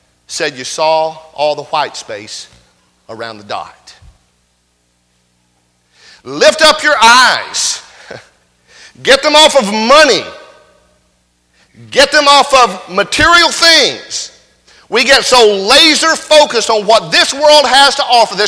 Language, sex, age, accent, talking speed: English, male, 50-69, American, 125 wpm